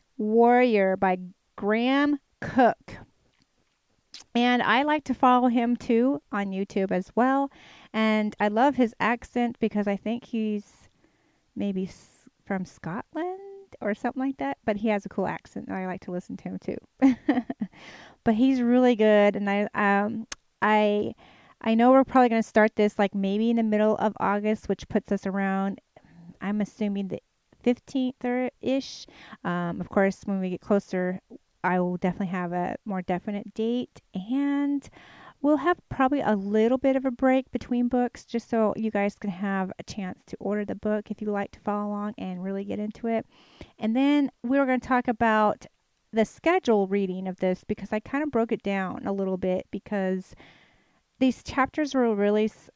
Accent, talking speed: American, 175 wpm